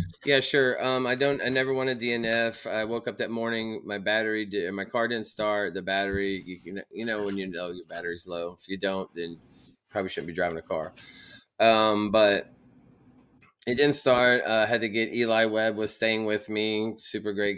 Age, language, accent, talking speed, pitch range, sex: 20-39, English, American, 215 wpm, 95-115 Hz, male